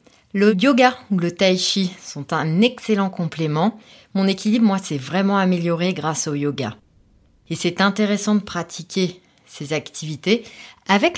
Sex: female